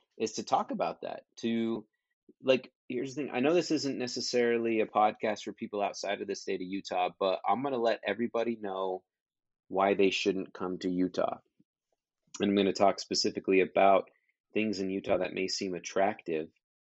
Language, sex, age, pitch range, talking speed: English, male, 30-49, 95-115 Hz, 185 wpm